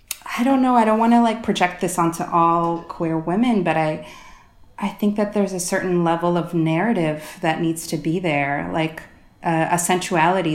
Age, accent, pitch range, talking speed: 30-49, American, 160-200 Hz, 190 wpm